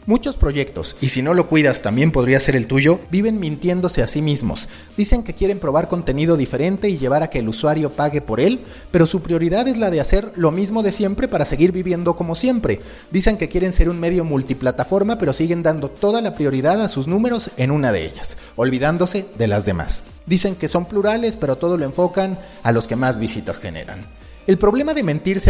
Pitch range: 130-185 Hz